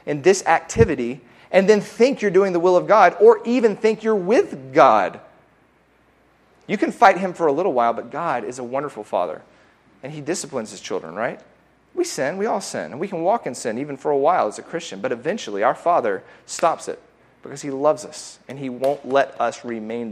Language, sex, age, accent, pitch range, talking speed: English, male, 40-59, American, 130-175 Hz, 215 wpm